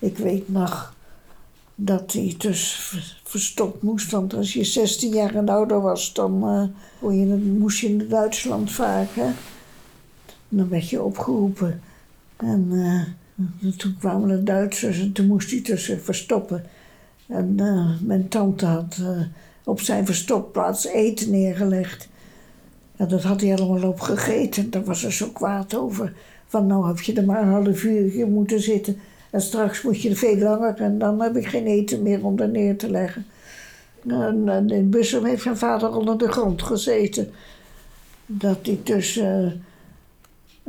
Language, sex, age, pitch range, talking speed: Dutch, female, 60-79, 185-215 Hz, 160 wpm